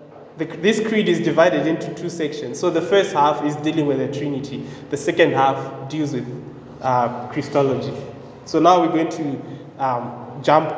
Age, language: 20-39, English